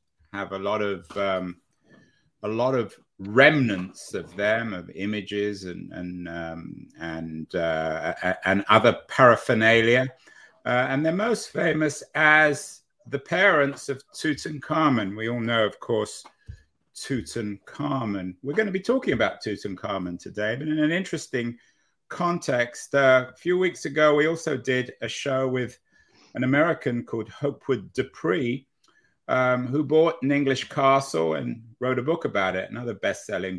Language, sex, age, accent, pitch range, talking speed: English, male, 50-69, British, 105-140 Hz, 145 wpm